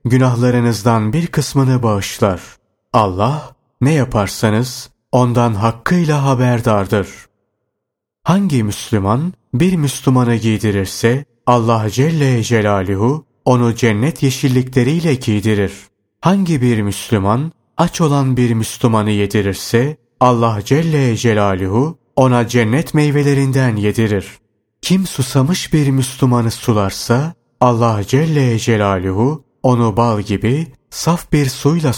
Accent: native